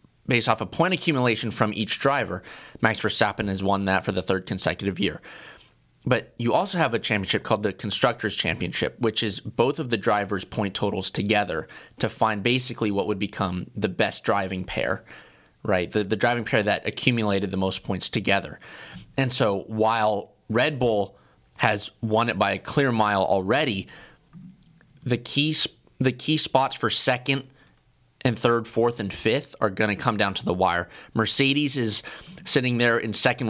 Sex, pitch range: male, 105-125 Hz